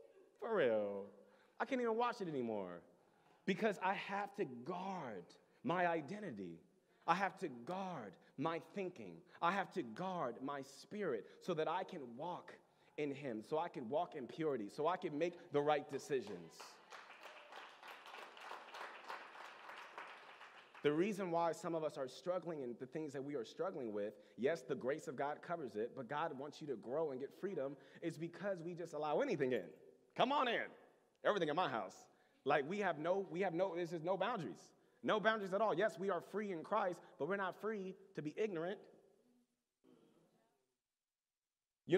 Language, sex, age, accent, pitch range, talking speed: English, male, 30-49, American, 155-205 Hz, 175 wpm